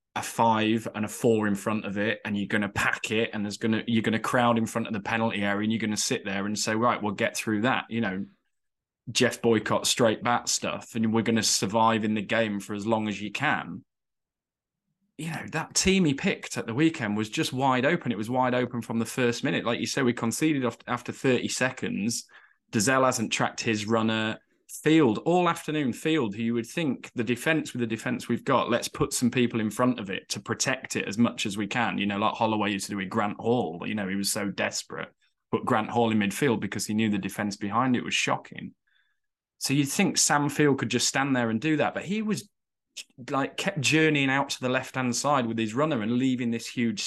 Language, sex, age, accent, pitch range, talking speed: English, male, 20-39, British, 110-140 Hz, 240 wpm